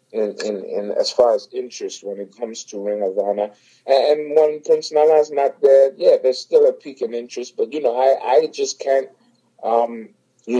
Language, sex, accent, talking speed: English, male, American, 205 wpm